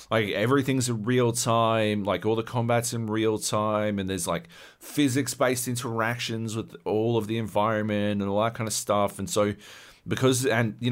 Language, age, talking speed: English, 30-49, 180 wpm